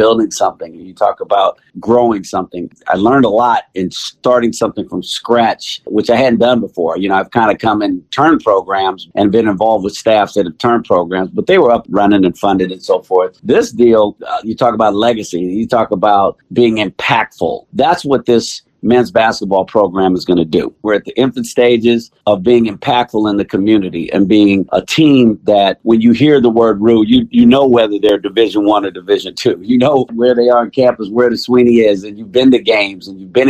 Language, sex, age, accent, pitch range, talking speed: English, male, 50-69, American, 100-125 Hz, 220 wpm